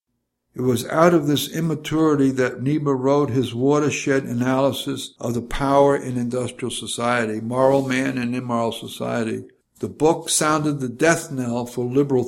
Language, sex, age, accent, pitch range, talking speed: English, male, 60-79, American, 125-150 Hz, 150 wpm